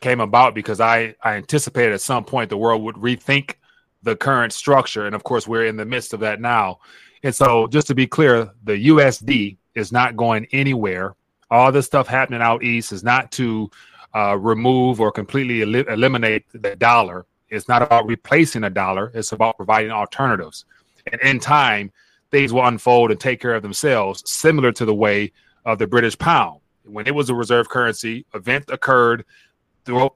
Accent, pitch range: American, 110-130 Hz